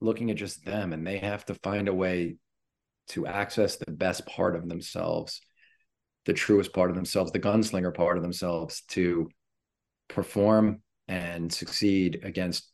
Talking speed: 155 wpm